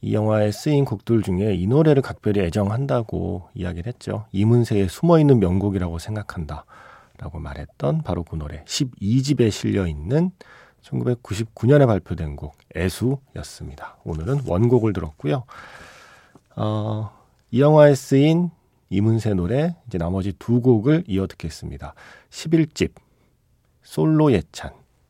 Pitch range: 95-135 Hz